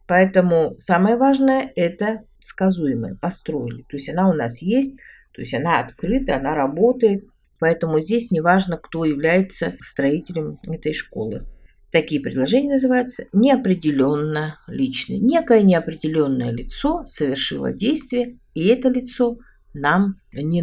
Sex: female